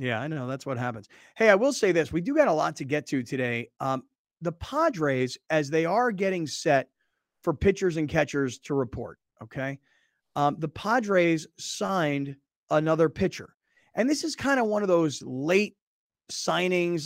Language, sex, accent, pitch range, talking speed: English, male, American, 155-190 Hz, 180 wpm